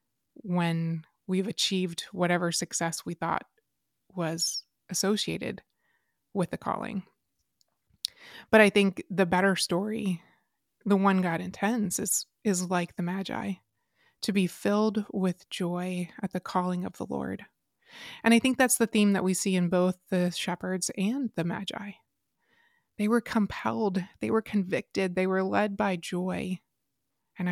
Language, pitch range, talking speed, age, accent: English, 175-205 Hz, 145 wpm, 20-39, American